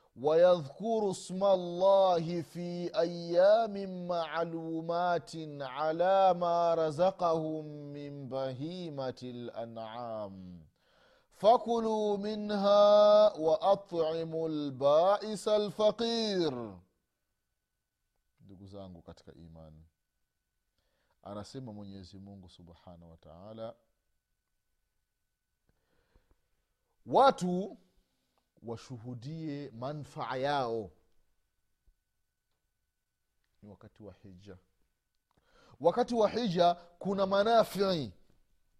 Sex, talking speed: male, 60 wpm